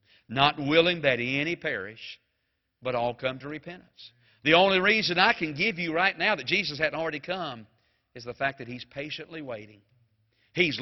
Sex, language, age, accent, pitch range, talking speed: male, English, 50-69, American, 145-210 Hz, 175 wpm